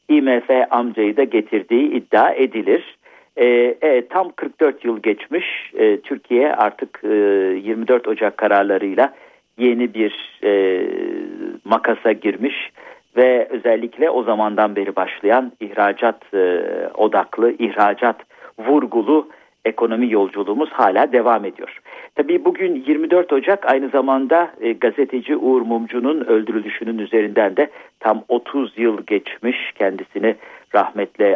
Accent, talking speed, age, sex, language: native, 110 wpm, 50-69, male, Turkish